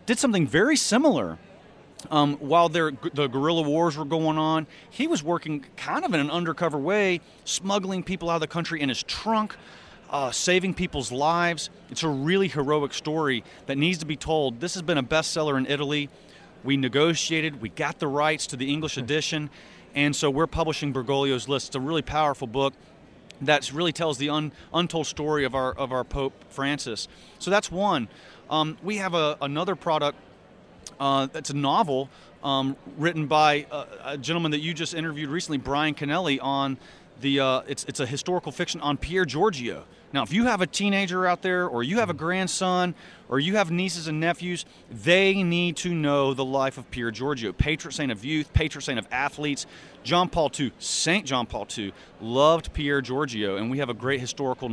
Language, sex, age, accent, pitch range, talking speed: English, male, 30-49, American, 140-170 Hz, 190 wpm